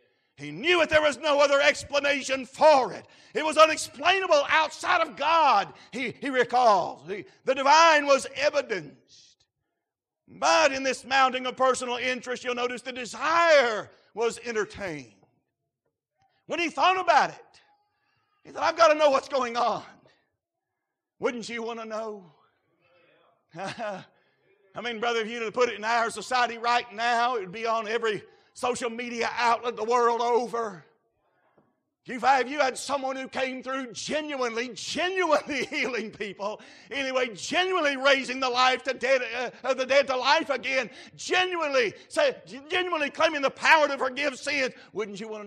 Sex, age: male, 50-69